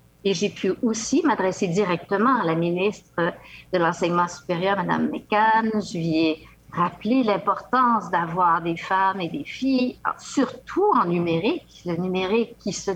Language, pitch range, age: French, 185-240 Hz, 50-69